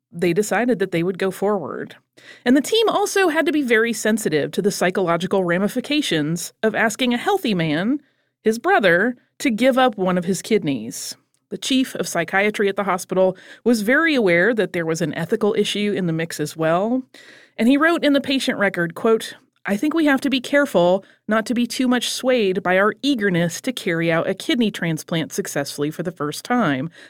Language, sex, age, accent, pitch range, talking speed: English, female, 30-49, American, 175-245 Hz, 200 wpm